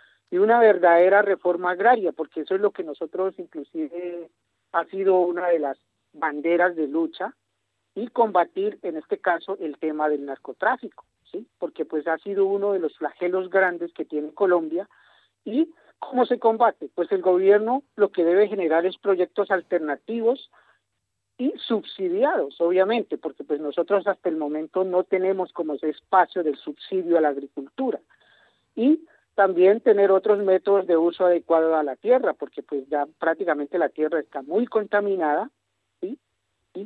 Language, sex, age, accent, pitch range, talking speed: Spanish, male, 50-69, Colombian, 155-200 Hz, 160 wpm